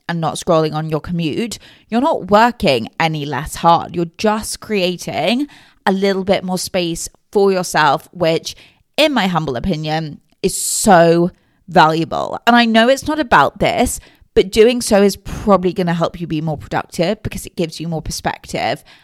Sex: female